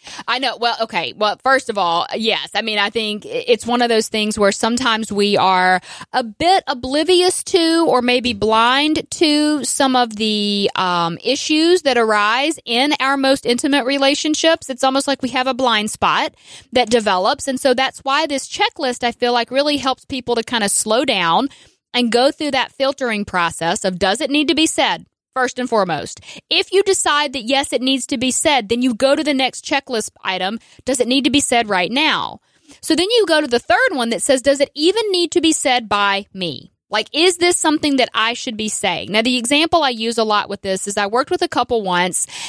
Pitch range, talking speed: 215-285 Hz, 220 wpm